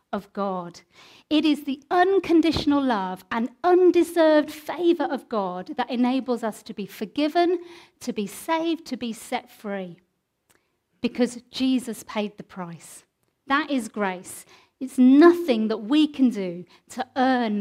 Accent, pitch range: British, 235-330 Hz